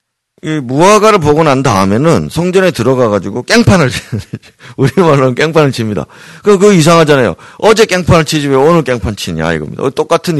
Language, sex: Korean, male